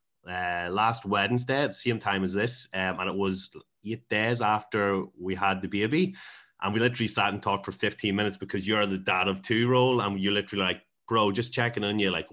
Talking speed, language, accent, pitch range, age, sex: 225 wpm, English, Irish, 95-115 Hz, 20-39, male